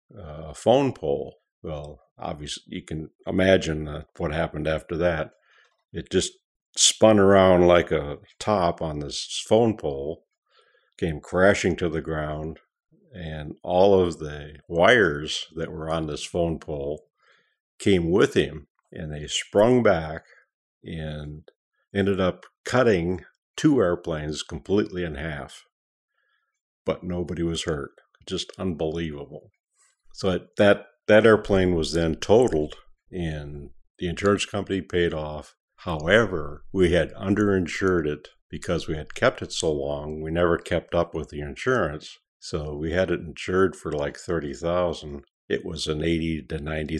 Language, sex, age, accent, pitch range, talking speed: English, male, 50-69, American, 75-90 Hz, 140 wpm